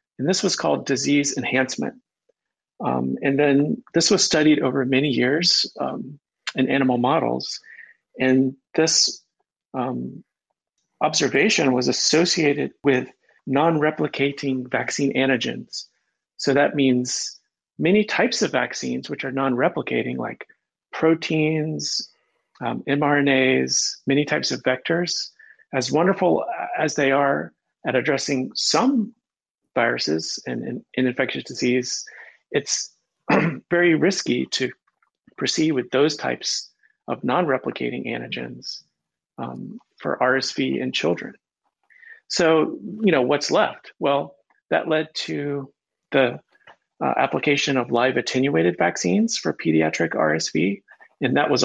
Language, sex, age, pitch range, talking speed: English, male, 40-59, 130-180 Hz, 115 wpm